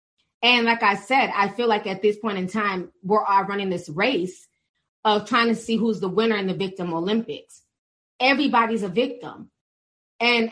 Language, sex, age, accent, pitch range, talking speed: English, female, 20-39, American, 220-290 Hz, 185 wpm